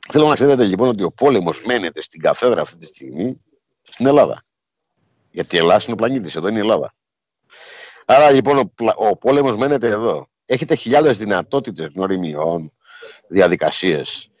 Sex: male